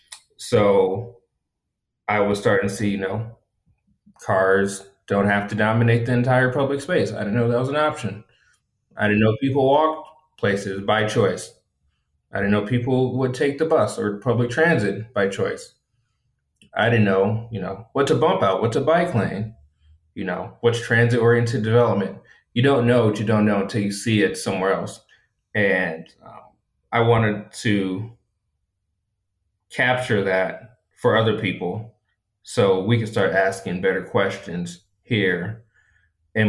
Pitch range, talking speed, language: 95-115 Hz, 155 wpm, English